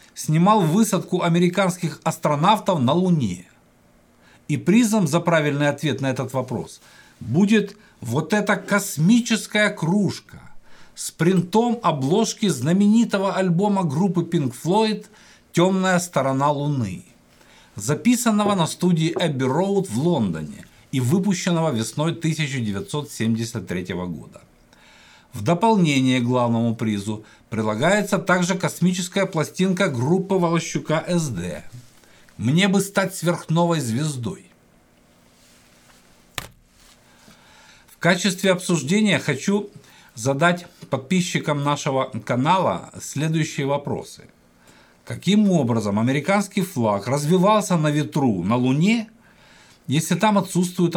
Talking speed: 95 wpm